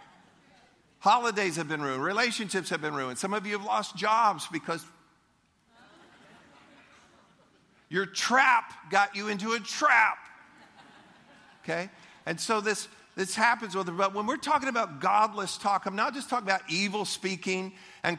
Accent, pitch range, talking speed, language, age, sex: American, 160-190 Hz, 145 wpm, English, 50-69, male